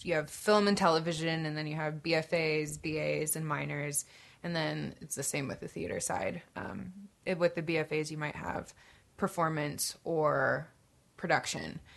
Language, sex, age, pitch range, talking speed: English, female, 20-39, 155-180 Hz, 165 wpm